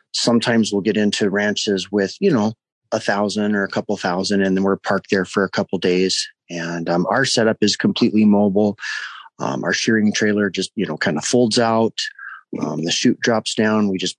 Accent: American